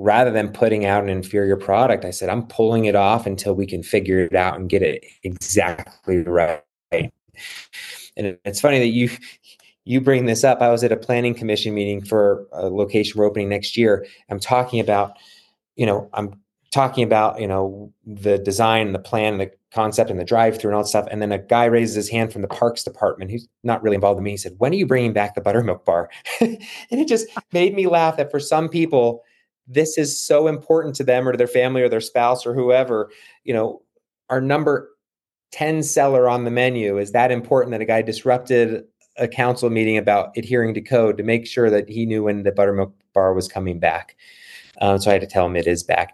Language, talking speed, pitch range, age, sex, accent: English, 220 wpm, 100-125 Hz, 30-49, male, American